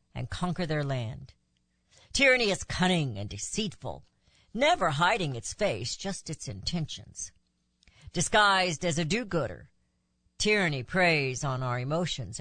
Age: 60-79